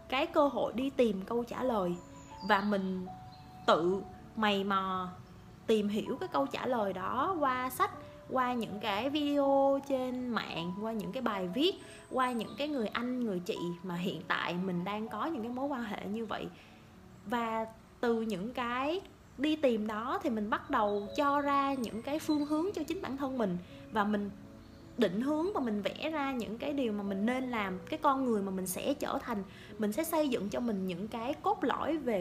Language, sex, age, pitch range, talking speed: Vietnamese, female, 20-39, 205-285 Hz, 205 wpm